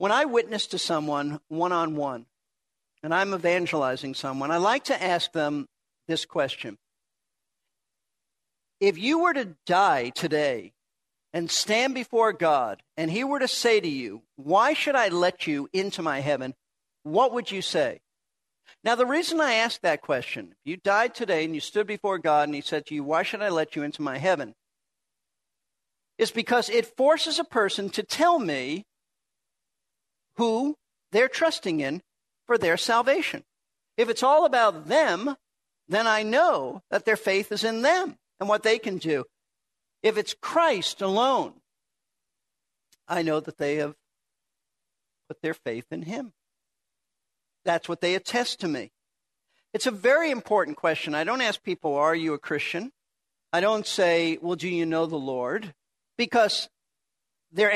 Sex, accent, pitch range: male, American, 160-245 Hz